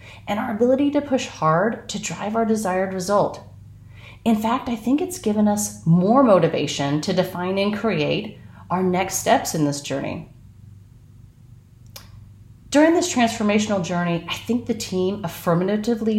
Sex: female